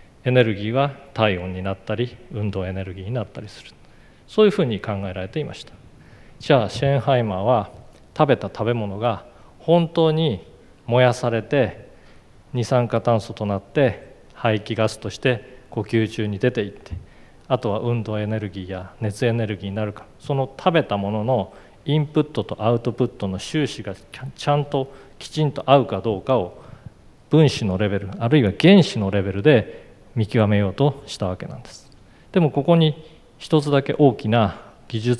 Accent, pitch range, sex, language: native, 105-130 Hz, male, Japanese